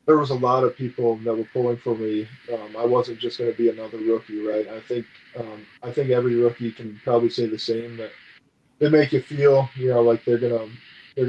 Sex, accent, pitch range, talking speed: male, American, 115-125 Hz, 240 wpm